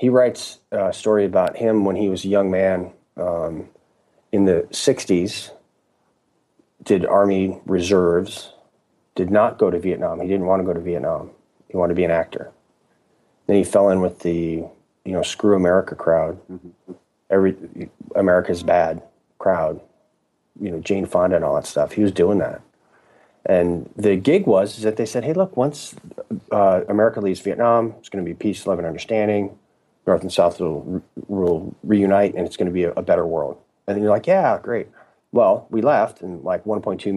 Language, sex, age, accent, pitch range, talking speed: English, male, 30-49, American, 90-105 Hz, 185 wpm